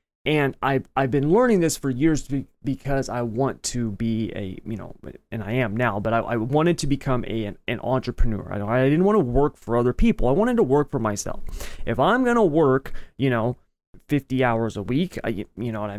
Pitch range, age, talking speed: 115-160 Hz, 30-49, 225 wpm